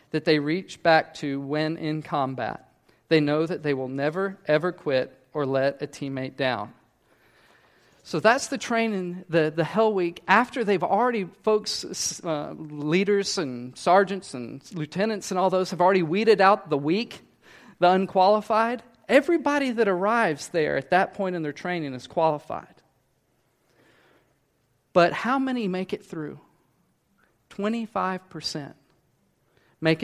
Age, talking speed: 40-59, 140 wpm